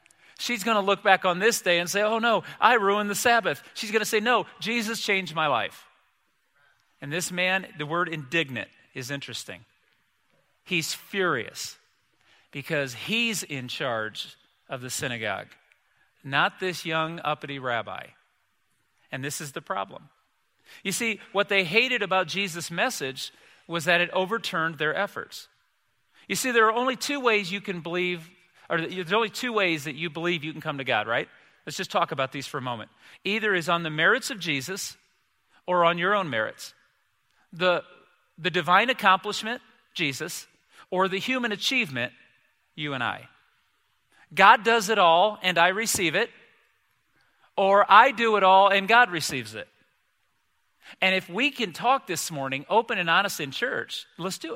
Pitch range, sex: 160-215 Hz, male